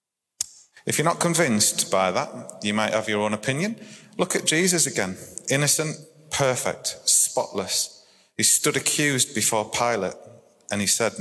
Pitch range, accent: 110-145 Hz, British